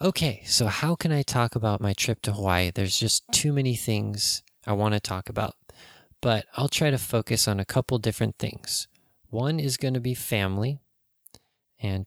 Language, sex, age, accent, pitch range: Japanese, male, 20-39, American, 105-125 Hz